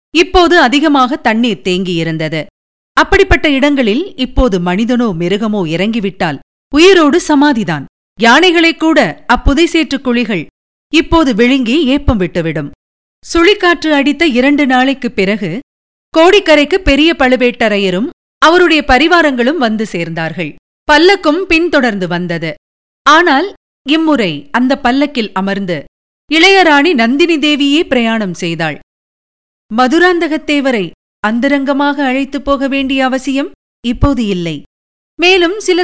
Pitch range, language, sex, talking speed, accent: 205-300 Hz, Tamil, female, 95 wpm, native